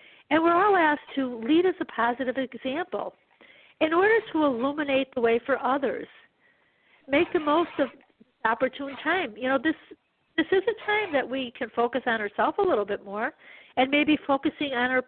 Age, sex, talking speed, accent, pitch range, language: 50-69, female, 185 wpm, American, 255-330 Hz, English